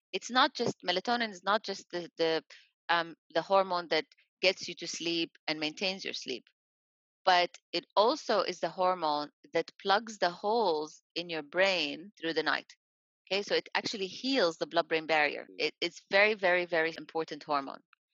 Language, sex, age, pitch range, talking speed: English, female, 30-49, 160-195 Hz, 175 wpm